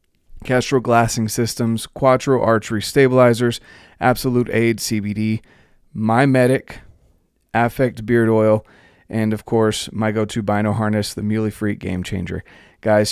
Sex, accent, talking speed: male, American, 125 wpm